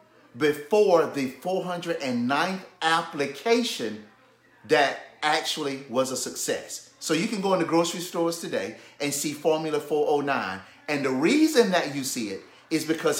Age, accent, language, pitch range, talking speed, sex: 30-49, American, English, 145-215 Hz, 135 wpm, male